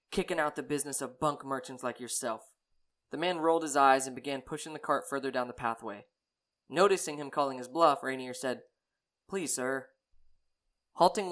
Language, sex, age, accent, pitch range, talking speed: English, male, 20-39, American, 125-150 Hz, 175 wpm